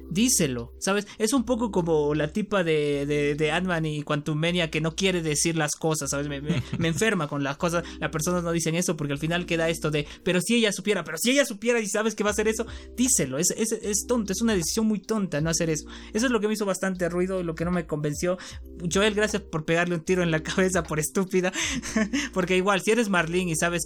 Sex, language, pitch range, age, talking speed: male, Spanish, 145-190 Hz, 20-39, 245 wpm